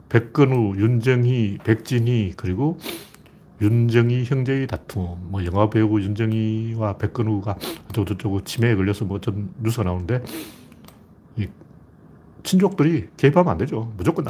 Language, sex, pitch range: Korean, male, 105-150 Hz